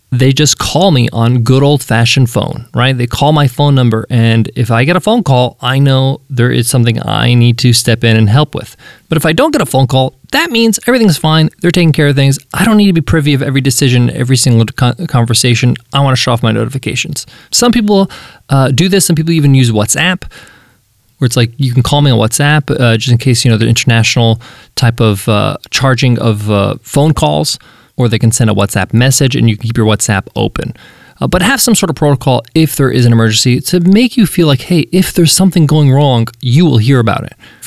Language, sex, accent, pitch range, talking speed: English, male, American, 120-175 Hz, 235 wpm